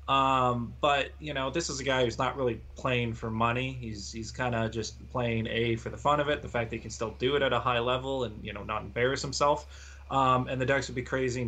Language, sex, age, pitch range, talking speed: English, male, 30-49, 110-130 Hz, 265 wpm